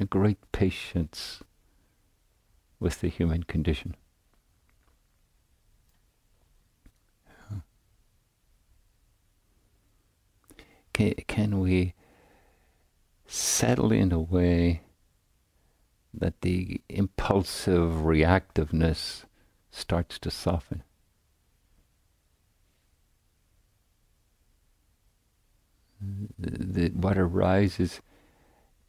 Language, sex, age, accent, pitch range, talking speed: English, male, 60-79, American, 85-100 Hz, 50 wpm